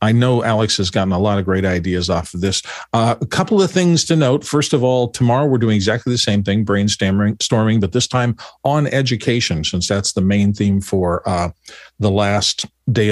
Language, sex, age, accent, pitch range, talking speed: English, male, 50-69, American, 100-125 Hz, 210 wpm